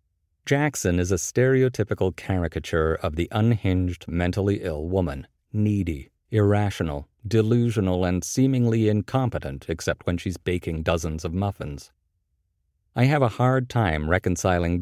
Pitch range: 85-110 Hz